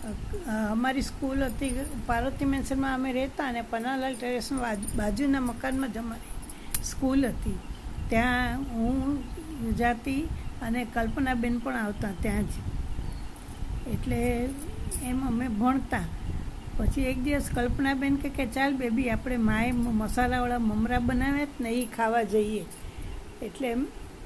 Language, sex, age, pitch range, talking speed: Gujarati, female, 60-79, 235-275 Hz, 115 wpm